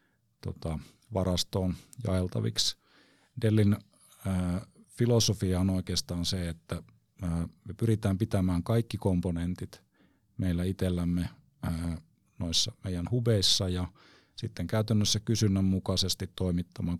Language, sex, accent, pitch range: Finnish, male, native, 90-110 Hz